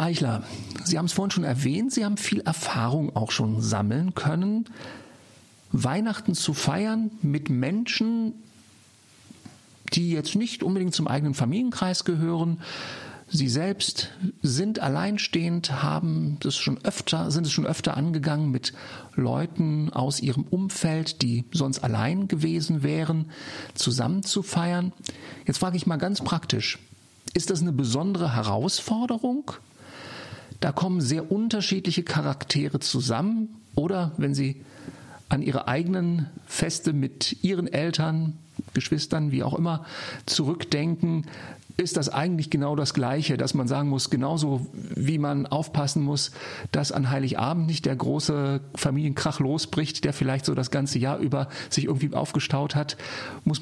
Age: 50-69